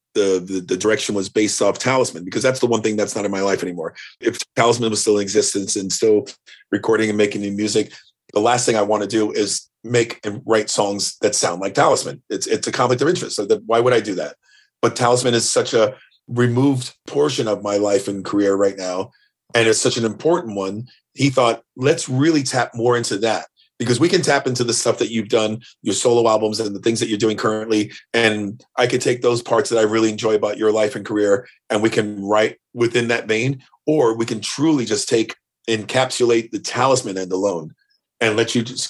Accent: American